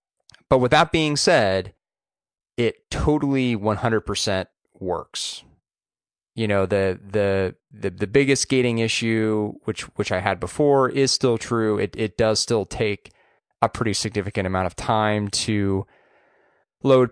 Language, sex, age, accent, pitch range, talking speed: English, male, 20-39, American, 95-115 Hz, 135 wpm